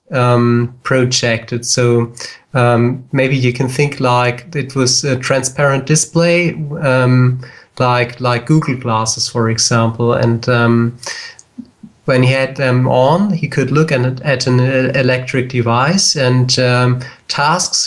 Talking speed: 130 wpm